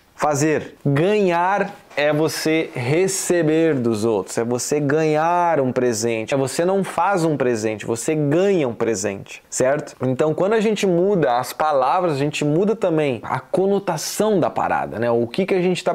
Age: 20-39